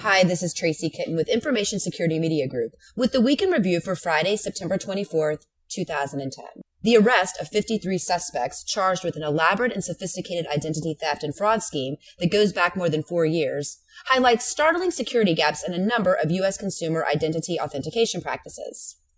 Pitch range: 155-215 Hz